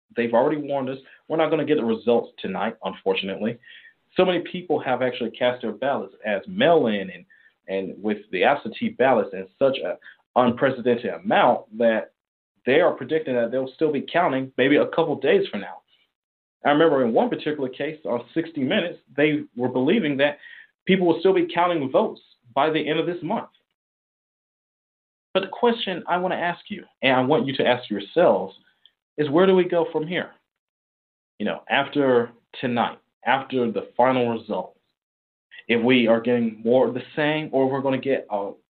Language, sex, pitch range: English, male, 115-155 Hz